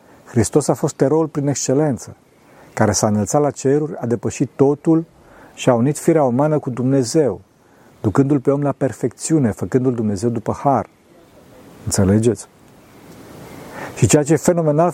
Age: 50-69